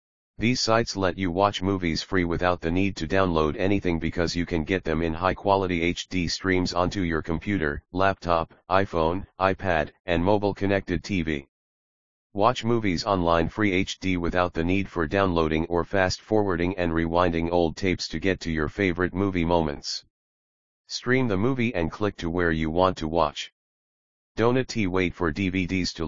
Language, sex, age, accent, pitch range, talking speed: English, male, 40-59, American, 80-95 Hz, 160 wpm